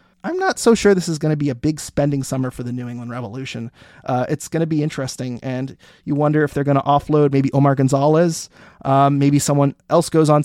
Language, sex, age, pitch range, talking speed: English, male, 30-49, 135-155 Hz, 235 wpm